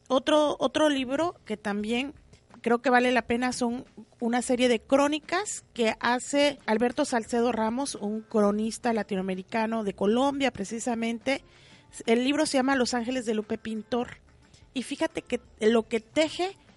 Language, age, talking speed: Spanish, 40-59, 145 wpm